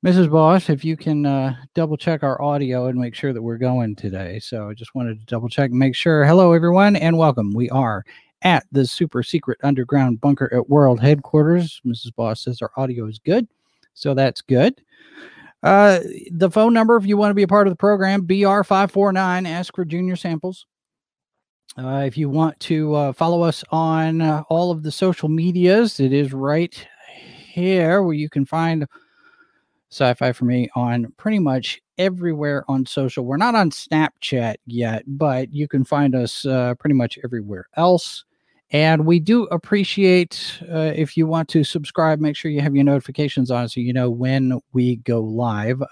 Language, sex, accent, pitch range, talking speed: English, male, American, 130-180 Hz, 180 wpm